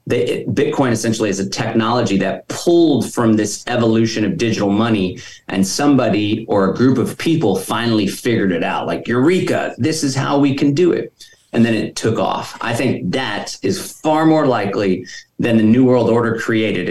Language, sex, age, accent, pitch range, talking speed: English, male, 30-49, American, 105-125 Hz, 180 wpm